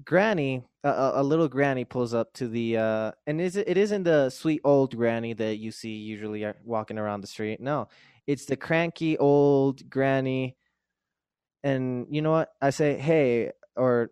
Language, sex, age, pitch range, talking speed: English, male, 20-39, 125-185 Hz, 175 wpm